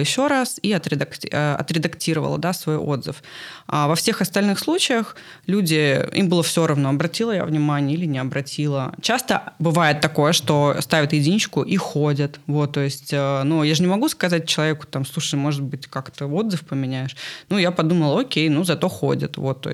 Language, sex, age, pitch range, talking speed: Russian, female, 20-39, 150-175 Hz, 175 wpm